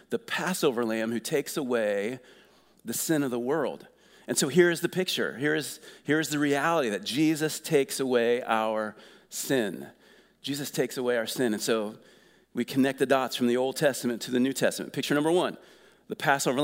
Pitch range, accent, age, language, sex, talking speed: 130-165 Hz, American, 40-59, English, male, 175 wpm